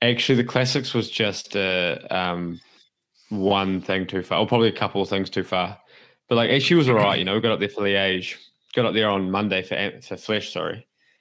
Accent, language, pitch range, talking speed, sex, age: Australian, English, 90-110 Hz, 240 wpm, male, 20-39